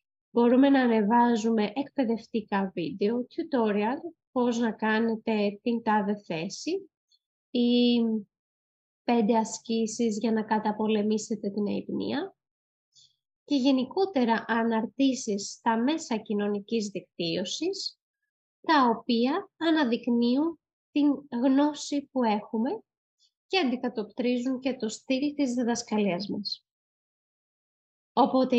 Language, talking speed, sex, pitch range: Greek, 90 wpm, female, 215-275 Hz